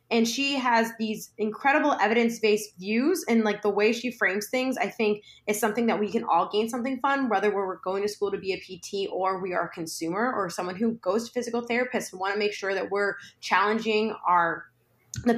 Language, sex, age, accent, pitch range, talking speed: English, female, 20-39, American, 200-245 Hz, 220 wpm